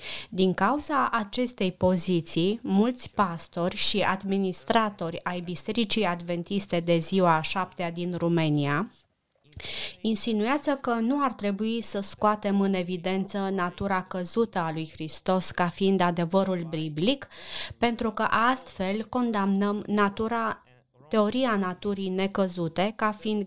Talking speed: 115 wpm